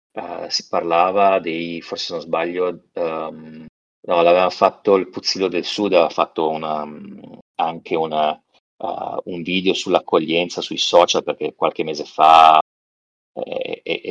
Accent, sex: native, male